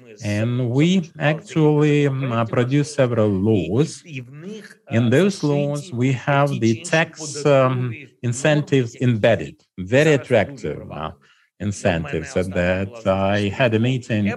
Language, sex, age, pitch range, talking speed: English, male, 50-69, 105-140 Hz, 110 wpm